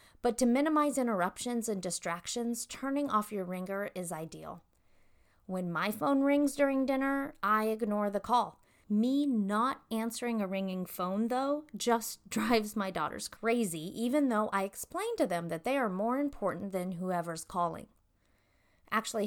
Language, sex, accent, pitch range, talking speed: English, female, American, 190-250 Hz, 155 wpm